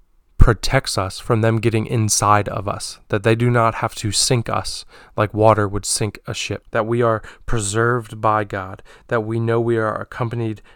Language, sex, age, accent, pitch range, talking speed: English, male, 20-39, American, 105-120 Hz, 190 wpm